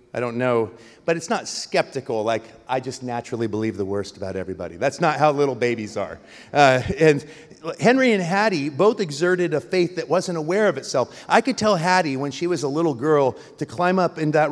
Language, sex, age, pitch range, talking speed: English, male, 40-59, 120-155 Hz, 210 wpm